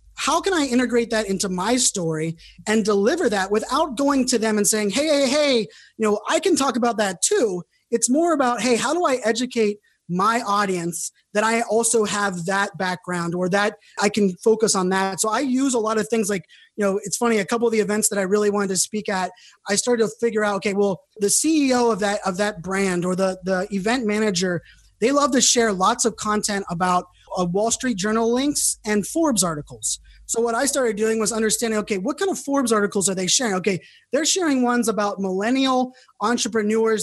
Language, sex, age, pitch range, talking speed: English, male, 20-39, 200-240 Hz, 215 wpm